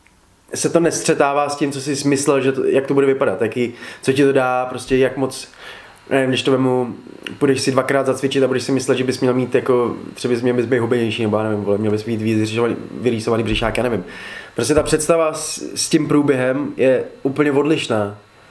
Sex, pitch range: male, 115-140 Hz